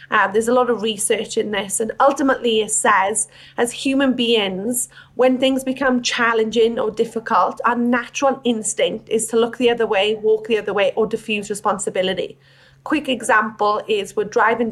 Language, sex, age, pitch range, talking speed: English, female, 30-49, 215-255 Hz, 170 wpm